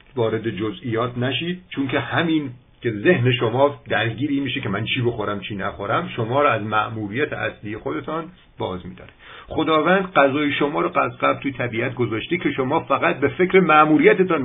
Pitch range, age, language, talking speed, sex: 110-155 Hz, 50-69, Persian, 160 wpm, male